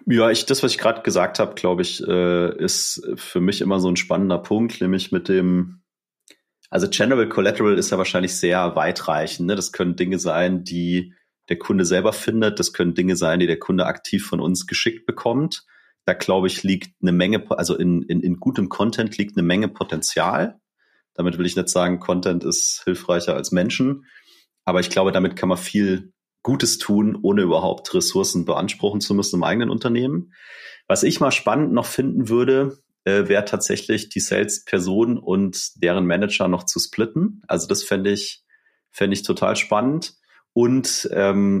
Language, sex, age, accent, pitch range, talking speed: German, male, 30-49, German, 90-105 Hz, 175 wpm